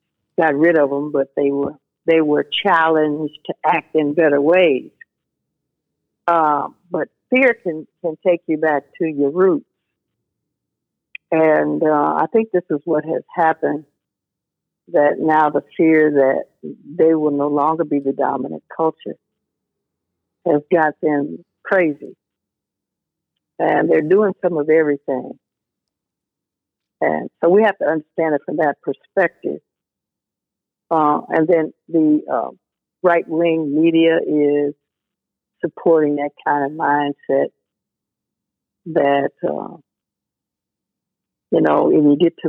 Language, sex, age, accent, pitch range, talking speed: English, female, 60-79, American, 145-160 Hz, 125 wpm